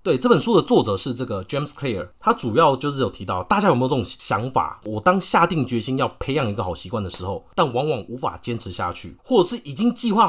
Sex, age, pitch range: male, 30-49, 100-145 Hz